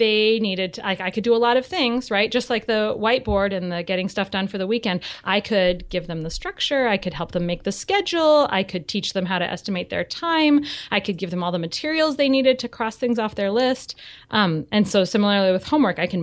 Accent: American